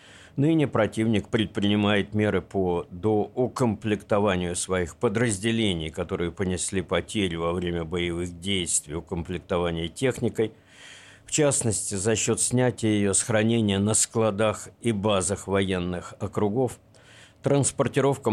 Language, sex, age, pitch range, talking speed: Russian, male, 50-69, 95-115 Hz, 100 wpm